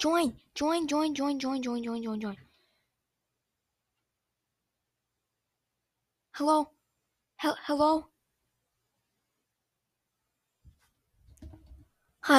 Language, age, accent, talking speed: English, 20-39, American, 55 wpm